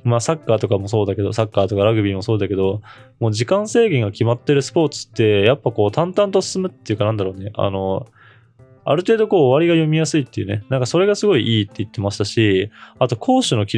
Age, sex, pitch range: 20-39, male, 100-140 Hz